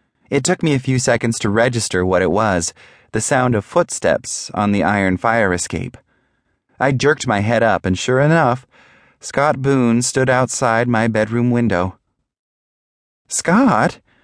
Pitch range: 95-125 Hz